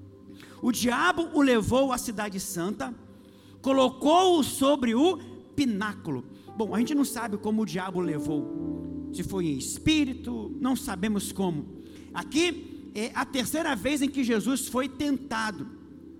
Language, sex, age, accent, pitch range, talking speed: Portuguese, male, 50-69, Brazilian, 205-290 Hz, 140 wpm